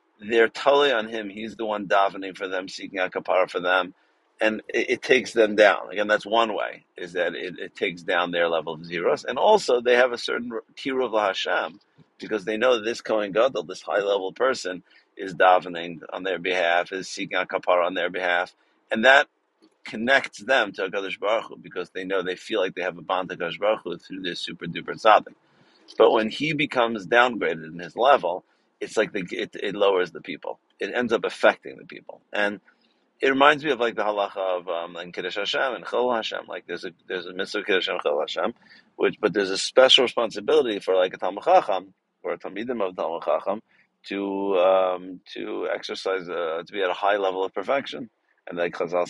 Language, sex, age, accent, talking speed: English, male, 50-69, American, 210 wpm